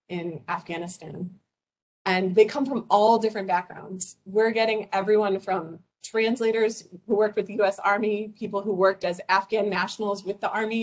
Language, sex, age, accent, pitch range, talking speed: English, female, 30-49, American, 185-215 Hz, 160 wpm